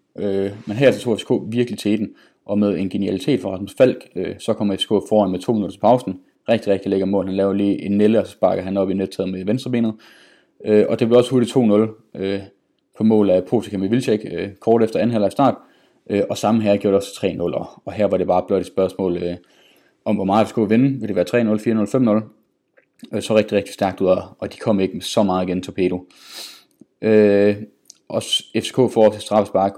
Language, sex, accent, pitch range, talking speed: Danish, male, native, 95-120 Hz, 235 wpm